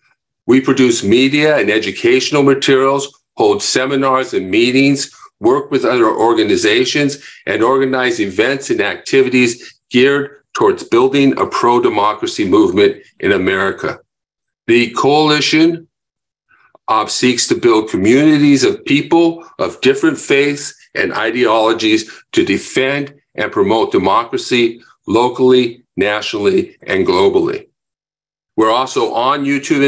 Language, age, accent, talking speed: English, 50-69, American, 105 wpm